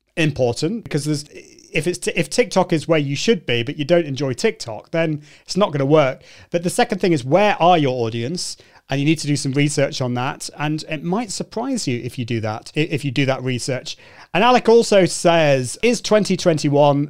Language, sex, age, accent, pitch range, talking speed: English, male, 30-49, British, 130-180 Hz, 215 wpm